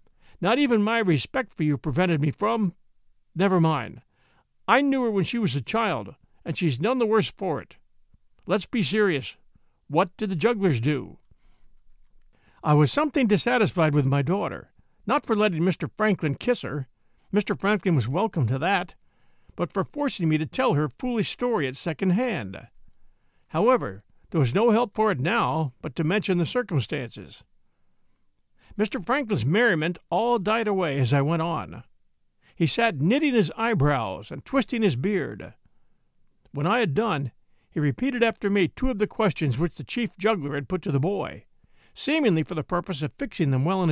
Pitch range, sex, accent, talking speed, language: 150-225 Hz, male, American, 170 wpm, English